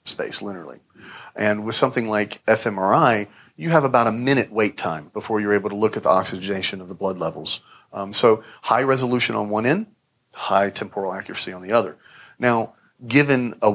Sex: male